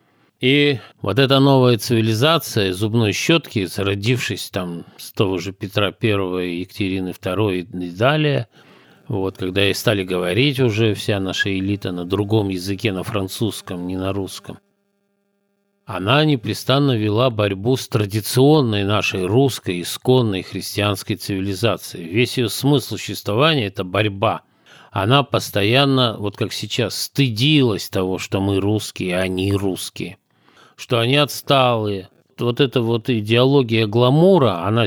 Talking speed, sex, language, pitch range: 125 wpm, male, Russian, 100-130 Hz